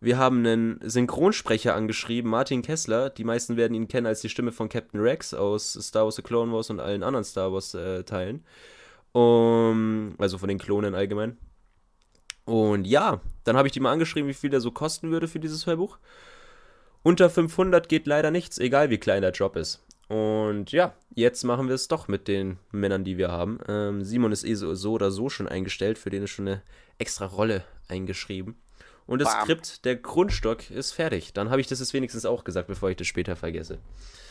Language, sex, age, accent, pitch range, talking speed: German, male, 20-39, German, 105-135 Hz, 200 wpm